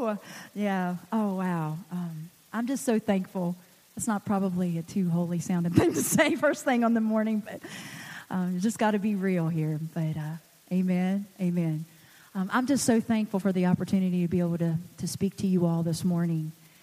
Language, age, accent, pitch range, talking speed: English, 40-59, American, 170-210 Hz, 195 wpm